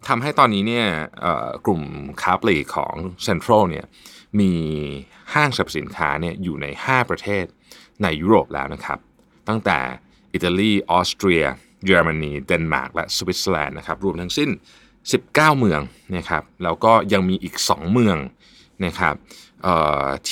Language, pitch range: Thai, 85-125 Hz